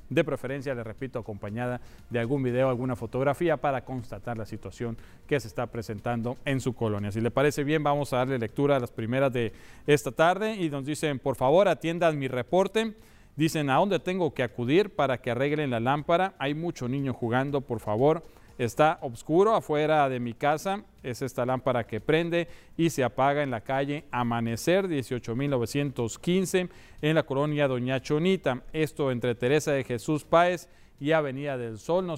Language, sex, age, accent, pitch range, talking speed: Spanish, male, 40-59, Mexican, 120-150 Hz, 175 wpm